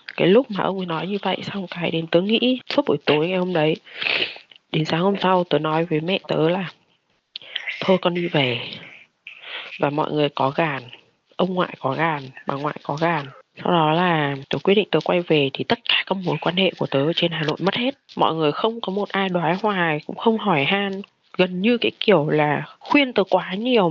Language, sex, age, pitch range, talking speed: Vietnamese, female, 20-39, 155-205 Hz, 230 wpm